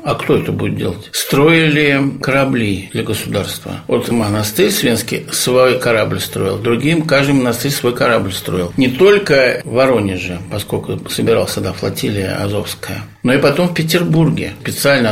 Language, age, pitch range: Russian, 60-79, 110-145 Hz